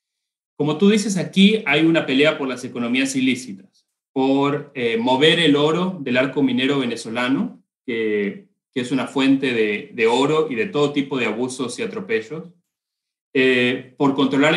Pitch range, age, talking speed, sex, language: 130-170 Hz, 30-49, 160 wpm, male, English